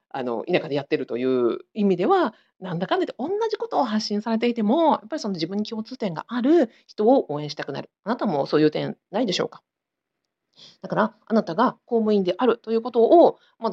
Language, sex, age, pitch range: Japanese, female, 40-59, 180-260 Hz